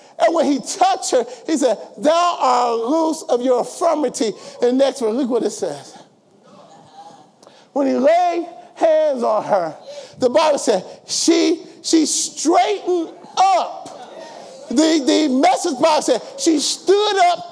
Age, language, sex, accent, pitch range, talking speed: 40-59, English, male, American, 290-370 Hz, 145 wpm